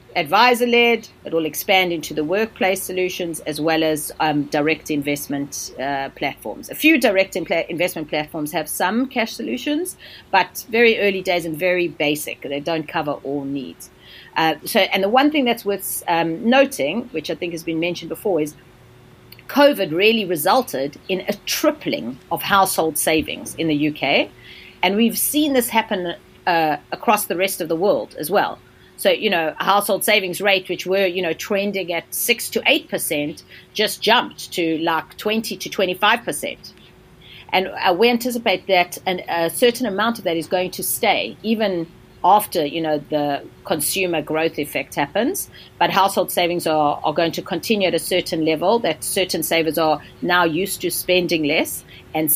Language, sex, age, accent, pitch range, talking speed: English, female, 40-59, South African, 160-205 Hz, 170 wpm